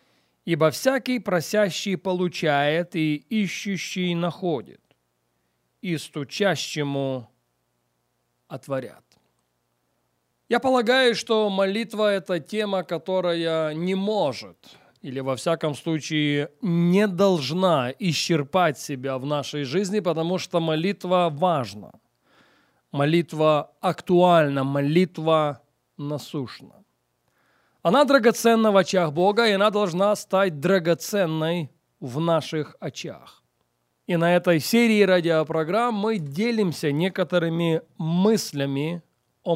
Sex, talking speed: male, 95 wpm